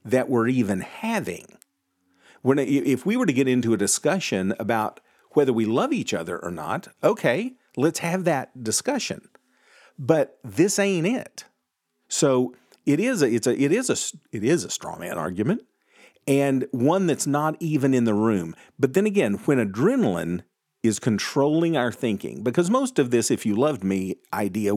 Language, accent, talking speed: English, American, 170 wpm